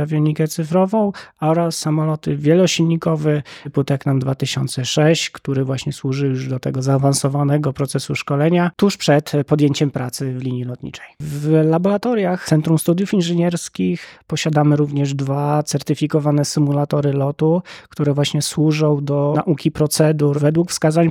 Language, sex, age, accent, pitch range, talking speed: Polish, male, 20-39, native, 145-165 Hz, 120 wpm